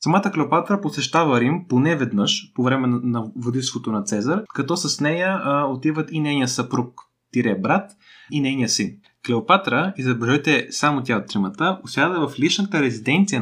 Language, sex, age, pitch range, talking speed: Bulgarian, male, 20-39, 120-150 Hz, 155 wpm